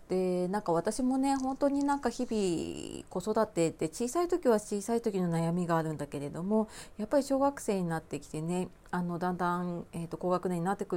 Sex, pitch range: female, 175-230 Hz